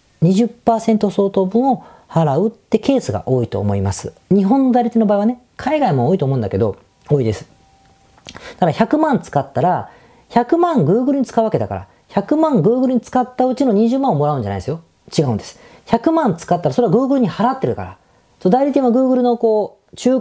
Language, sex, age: Japanese, female, 40-59